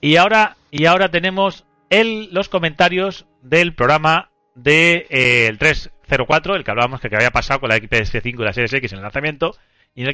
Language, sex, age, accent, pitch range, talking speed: Spanish, male, 30-49, Spanish, 110-155 Hz, 200 wpm